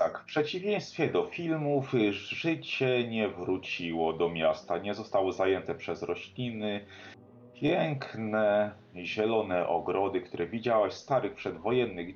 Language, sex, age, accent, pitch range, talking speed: Polish, male, 30-49, native, 95-130 Hz, 115 wpm